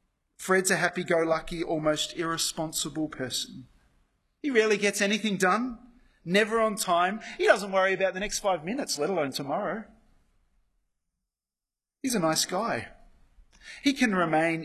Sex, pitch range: male, 135-180 Hz